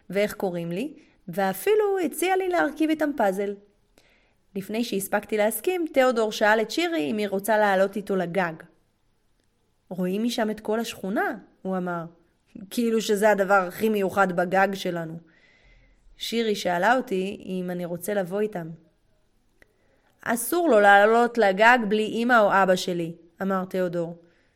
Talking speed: 135 wpm